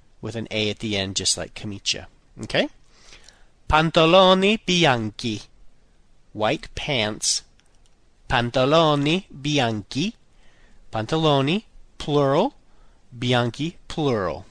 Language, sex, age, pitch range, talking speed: Italian, male, 30-49, 110-160 Hz, 85 wpm